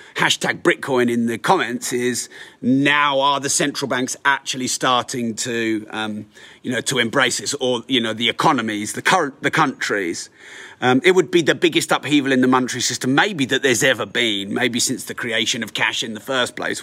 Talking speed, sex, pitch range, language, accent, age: 195 wpm, male, 120-155 Hz, English, British, 30-49